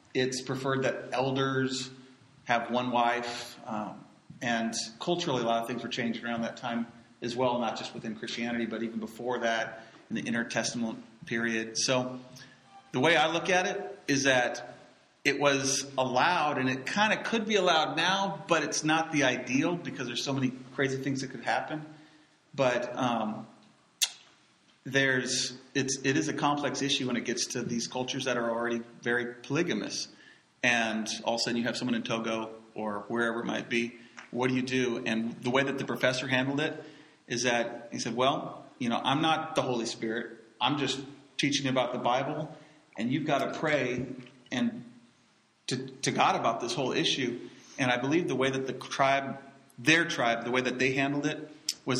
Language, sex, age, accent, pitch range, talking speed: English, male, 40-59, American, 120-140 Hz, 185 wpm